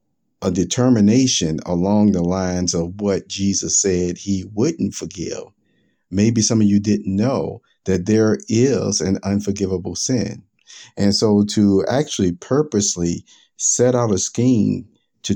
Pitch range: 85-105 Hz